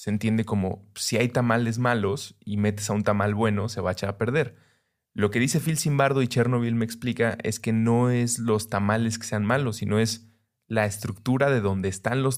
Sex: male